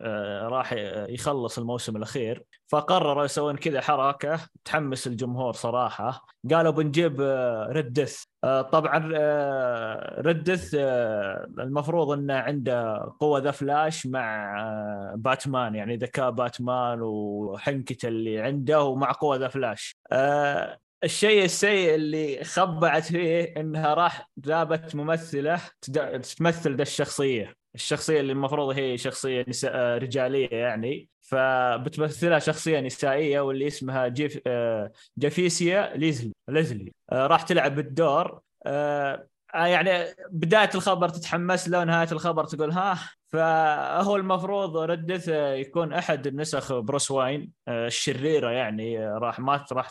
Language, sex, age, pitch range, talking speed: Arabic, male, 20-39, 130-165 Hz, 105 wpm